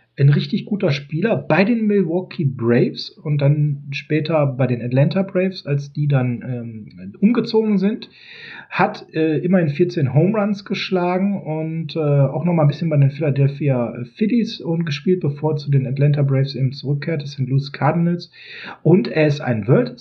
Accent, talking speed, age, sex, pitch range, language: German, 170 wpm, 40-59, male, 140-185 Hz, German